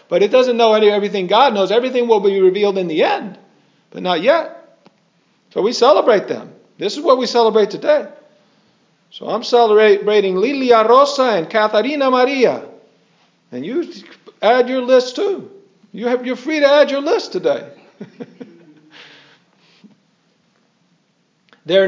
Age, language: 50-69, English